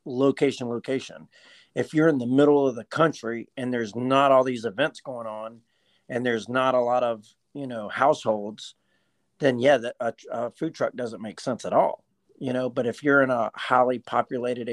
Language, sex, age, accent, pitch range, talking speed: English, male, 40-59, American, 120-140 Hz, 190 wpm